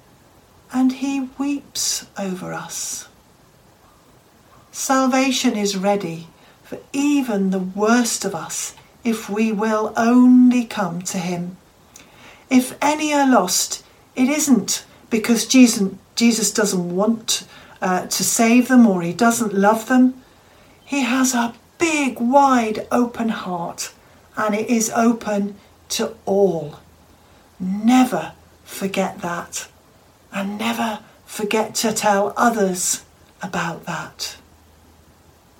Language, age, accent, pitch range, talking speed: English, 50-69, British, 190-240 Hz, 110 wpm